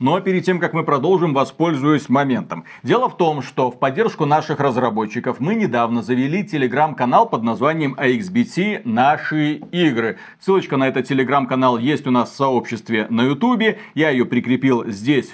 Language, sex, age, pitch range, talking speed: Russian, male, 40-59, 130-180 Hz, 155 wpm